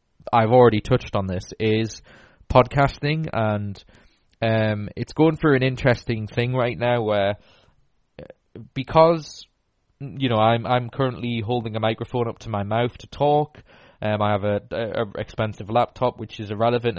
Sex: male